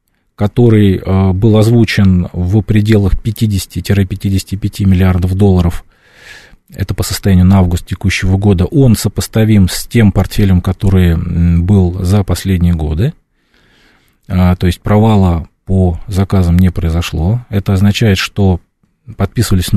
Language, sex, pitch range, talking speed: Russian, male, 95-110 Hz, 110 wpm